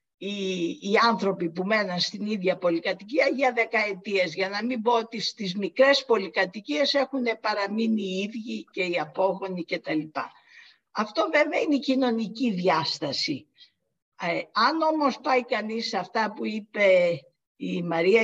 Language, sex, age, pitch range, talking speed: Greek, female, 50-69, 185-240 Hz, 140 wpm